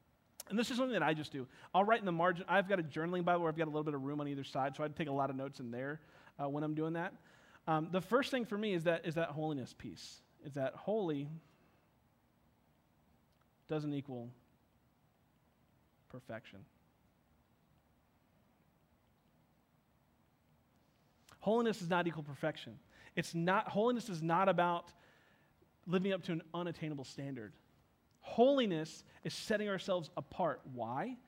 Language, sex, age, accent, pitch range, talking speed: English, male, 30-49, American, 145-190 Hz, 160 wpm